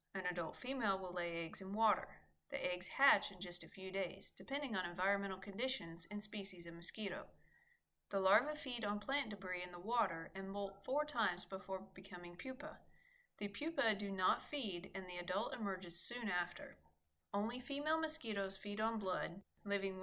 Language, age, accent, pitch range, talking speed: English, 30-49, American, 180-245 Hz, 175 wpm